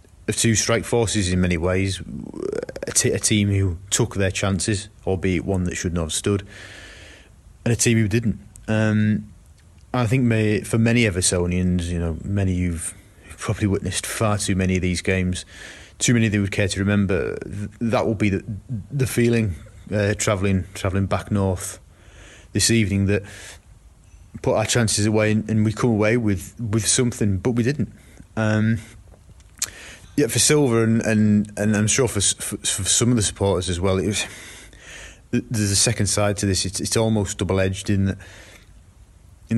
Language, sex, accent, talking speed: English, male, British, 175 wpm